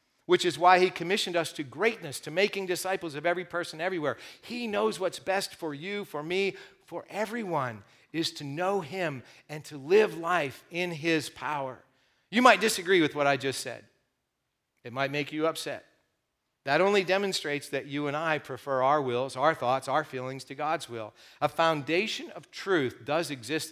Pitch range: 140-180 Hz